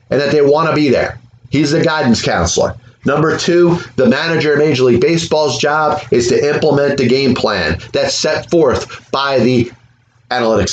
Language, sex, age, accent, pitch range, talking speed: English, male, 30-49, American, 120-150 Hz, 180 wpm